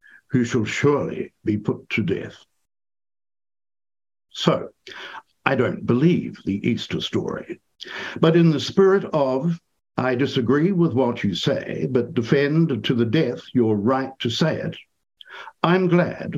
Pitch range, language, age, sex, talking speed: 120-170 Hz, English, 60-79, male, 135 wpm